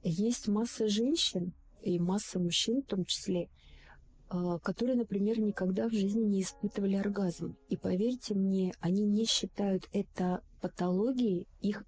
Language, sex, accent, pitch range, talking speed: Russian, female, native, 185-215 Hz, 130 wpm